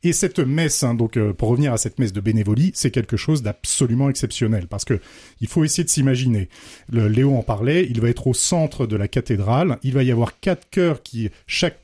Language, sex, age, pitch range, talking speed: French, male, 40-59, 115-155 Hz, 225 wpm